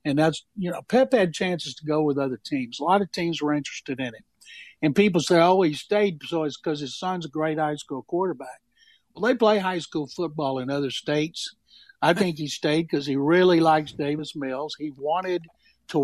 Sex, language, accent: male, English, American